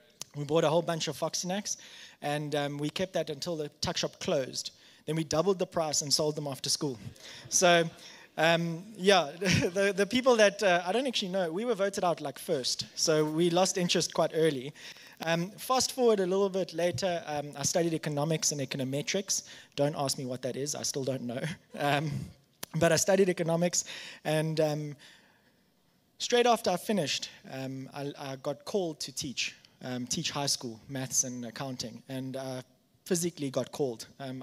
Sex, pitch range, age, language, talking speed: male, 140-185 Hz, 20-39, English, 185 wpm